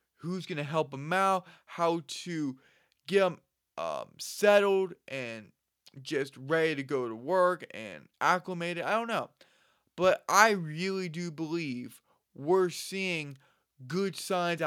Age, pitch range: 20-39, 125-170 Hz